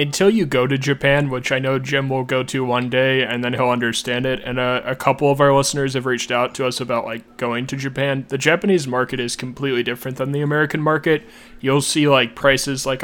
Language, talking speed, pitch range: English, 235 wpm, 125-140 Hz